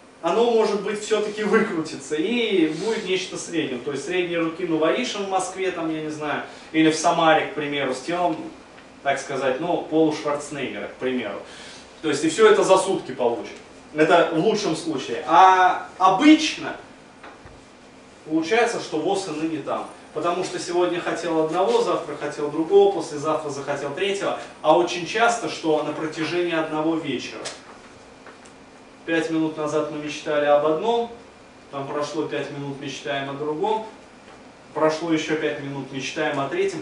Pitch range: 145-180 Hz